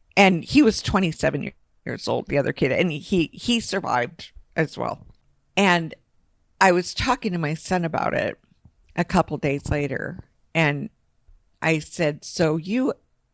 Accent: American